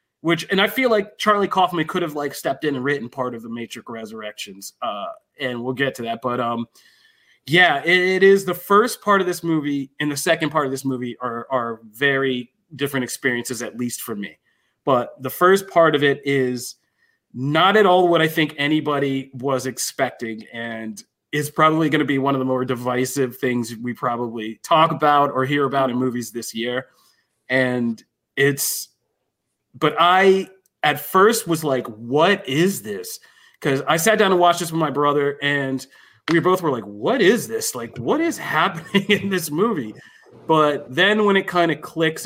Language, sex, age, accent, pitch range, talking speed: English, male, 30-49, American, 125-170 Hz, 190 wpm